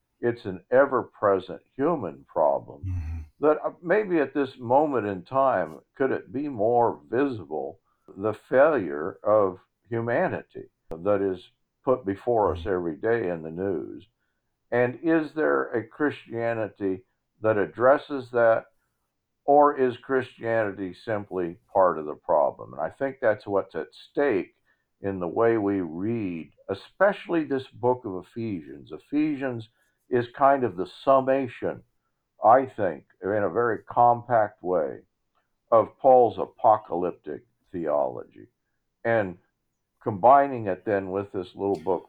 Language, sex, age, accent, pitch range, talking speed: English, male, 50-69, American, 95-130 Hz, 125 wpm